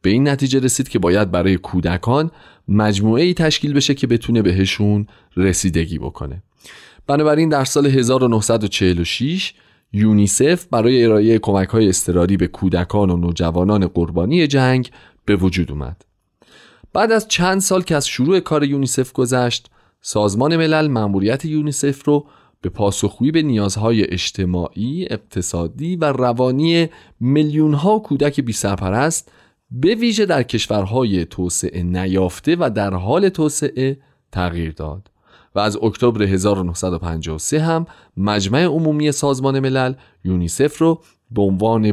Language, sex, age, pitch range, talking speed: Persian, male, 30-49, 95-145 Hz, 125 wpm